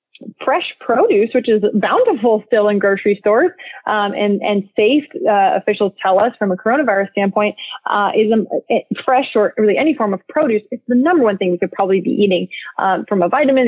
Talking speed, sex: 200 wpm, female